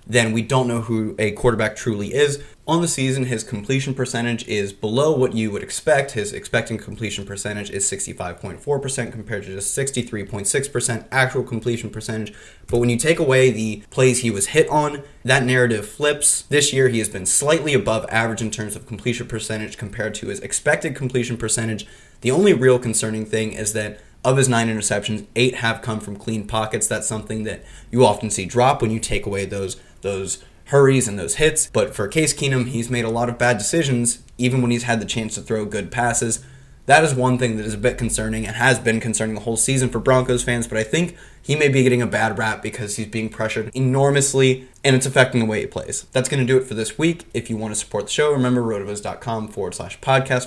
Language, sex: English, male